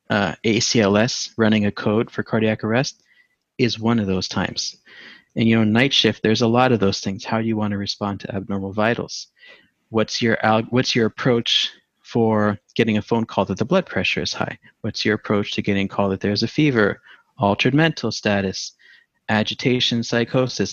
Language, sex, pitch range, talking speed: English, male, 100-120 Hz, 195 wpm